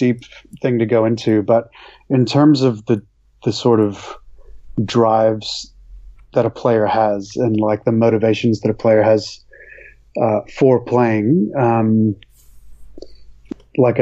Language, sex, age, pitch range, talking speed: English, male, 30-49, 105-125 Hz, 135 wpm